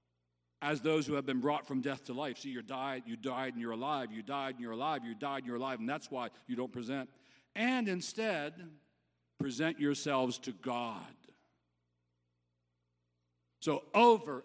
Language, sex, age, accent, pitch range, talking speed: English, male, 60-79, American, 95-155 Hz, 175 wpm